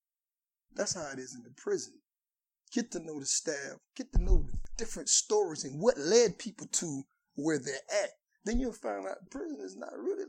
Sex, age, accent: male, 30-49, American